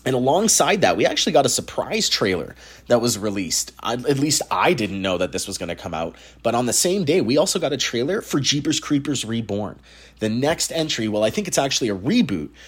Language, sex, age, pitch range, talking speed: English, male, 30-49, 105-155 Hz, 230 wpm